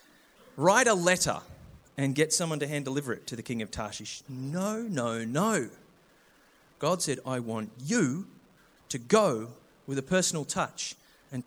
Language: English